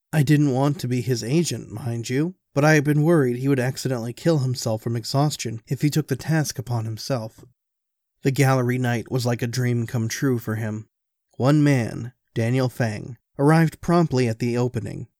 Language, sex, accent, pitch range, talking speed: English, male, American, 115-140 Hz, 190 wpm